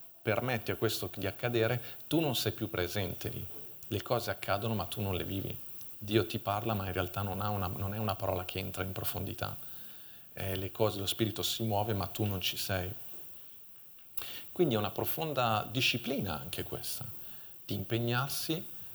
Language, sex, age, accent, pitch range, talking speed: Italian, male, 40-59, native, 95-115 Hz, 170 wpm